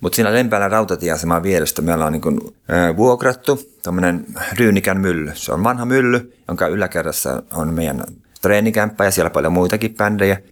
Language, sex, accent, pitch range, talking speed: Finnish, male, native, 80-100 Hz, 150 wpm